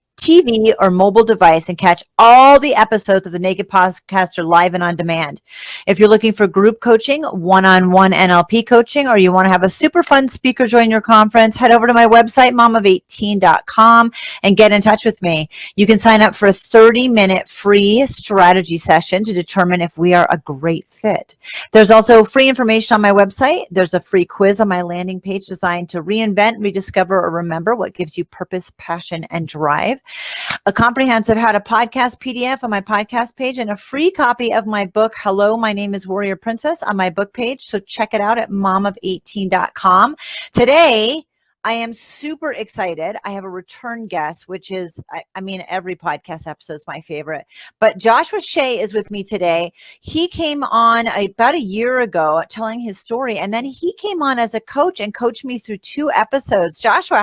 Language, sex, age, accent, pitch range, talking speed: English, female, 40-59, American, 185-235 Hz, 190 wpm